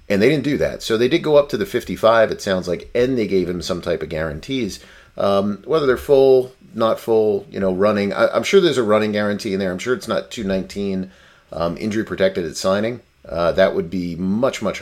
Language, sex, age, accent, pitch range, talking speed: English, male, 40-59, American, 80-100 Hz, 230 wpm